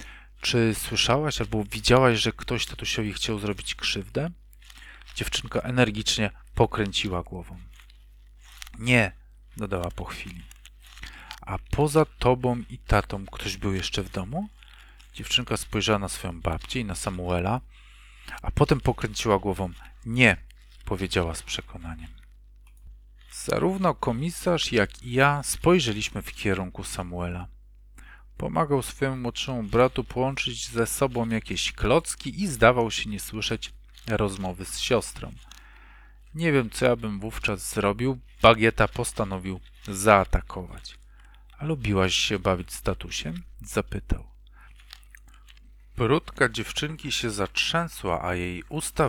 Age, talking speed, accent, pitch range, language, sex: 40-59, 115 wpm, native, 90-120 Hz, Polish, male